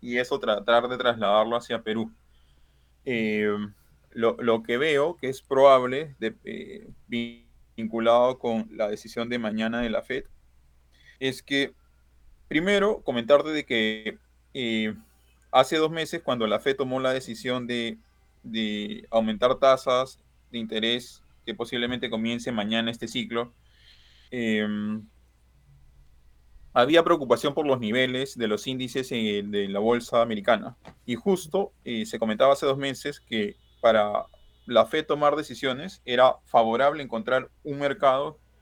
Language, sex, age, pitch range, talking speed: Spanish, male, 20-39, 105-130 Hz, 130 wpm